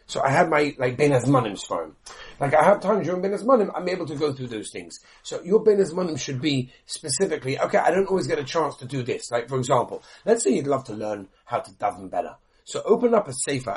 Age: 40-59